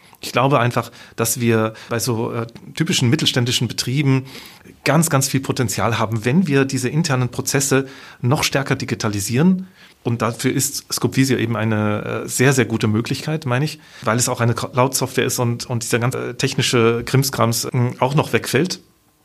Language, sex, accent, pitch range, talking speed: German, male, German, 115-135 Hz, 170 wpm